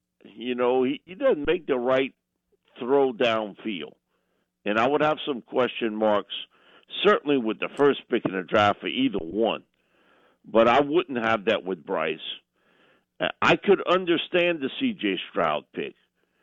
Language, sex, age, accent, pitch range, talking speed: English, male, 50-69, American, 105-160 Hz, 155 wpm